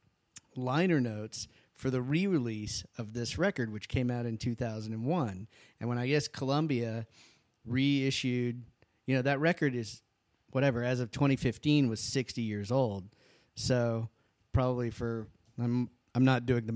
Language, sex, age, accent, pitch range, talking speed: English, male, 40-59, American, 115-135 Hz, 160 wpm